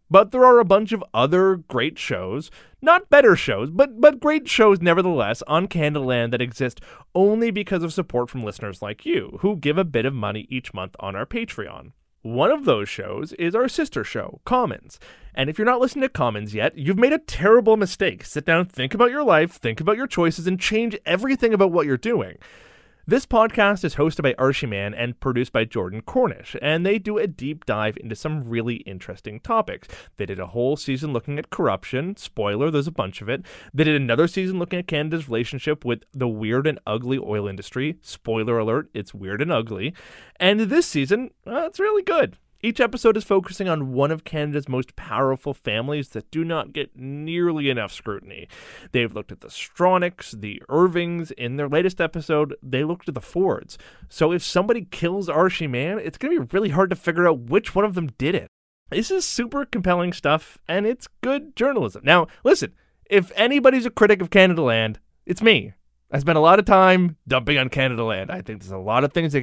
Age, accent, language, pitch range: 30-49, American, English, 125-205 Hz